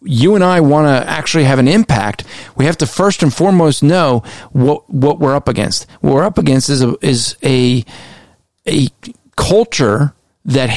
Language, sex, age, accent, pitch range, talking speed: English, male, 40-59, American, 125-155 Hz, 180 wpm